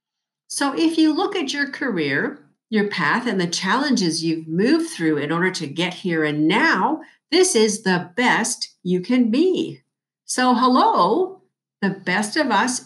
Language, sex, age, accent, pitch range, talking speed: English, female, 50-69, American, 175-275 Hz, 165 wpm